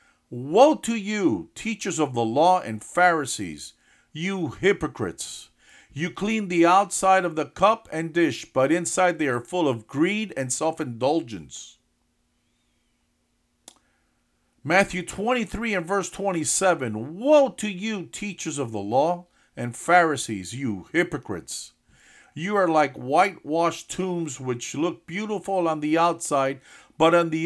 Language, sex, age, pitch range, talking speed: English, male, 50-69, 145-190 Hz, 130 wpm